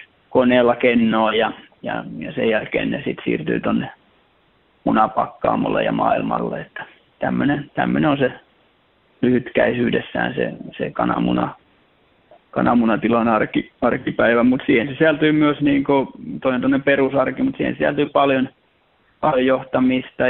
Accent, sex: native, male